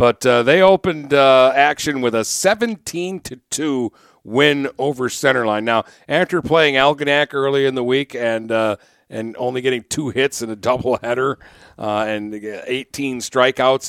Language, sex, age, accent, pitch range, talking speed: English, male, 50-69, American, 110-135 Hz, 155 wpm